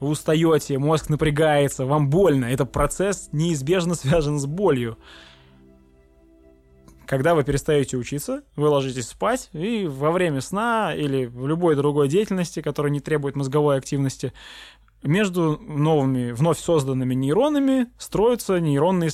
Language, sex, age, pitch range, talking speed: Russian, male, 20-39, 125-160 Hz, 125 wpm